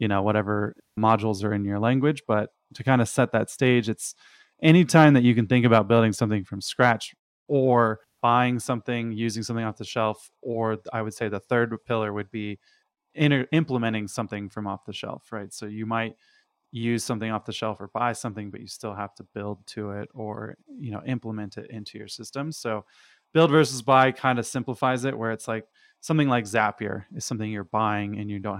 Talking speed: 210 wpm